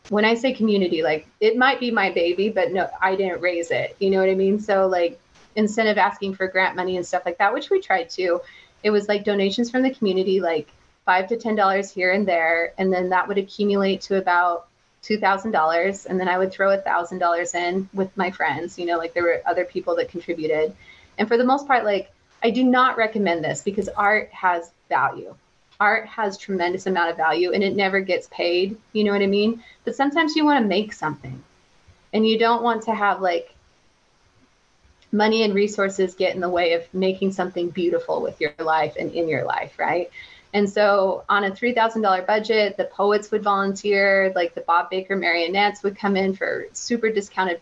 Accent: American